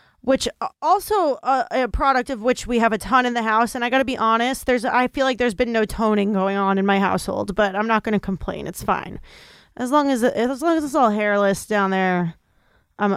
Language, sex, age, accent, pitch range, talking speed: English, female, 20-39, American, 205-260 Hz, 240 wpm